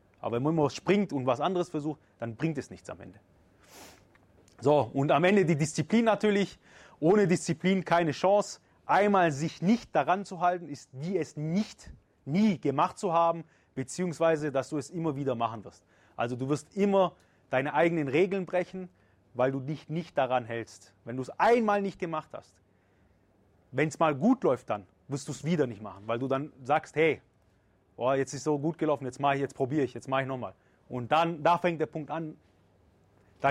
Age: 30-49